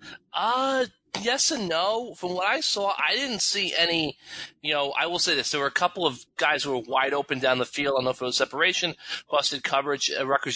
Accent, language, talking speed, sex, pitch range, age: American, English, 235 wpm, male, 135-160 Hz, 20-39